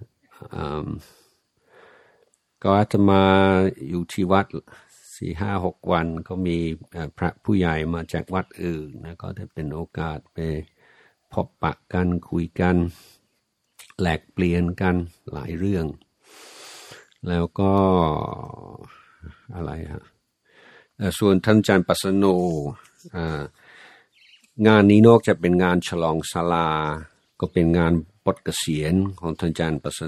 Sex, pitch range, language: male, 80-95 Hz, Thai